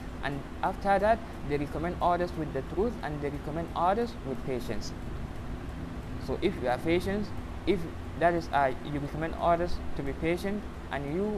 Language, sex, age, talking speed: English, male, 20-39, 170 wpm